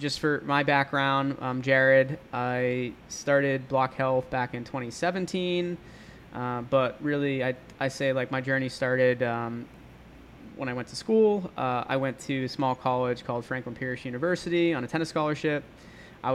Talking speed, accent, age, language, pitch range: 165 wpm, American, 20-39, English, 125-140 Hz